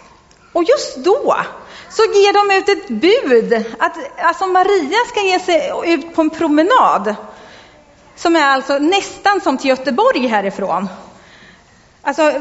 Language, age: Swedish, 40-59